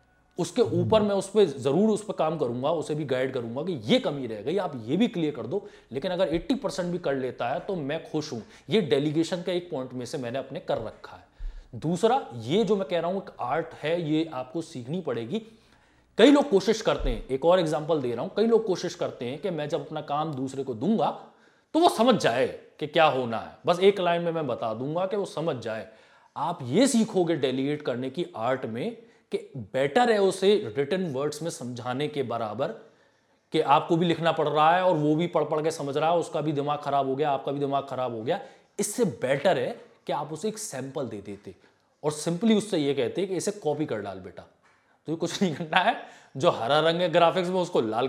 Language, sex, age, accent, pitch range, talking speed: Hindi, male, 30-49, native, 140-195 Hz, 230 wpm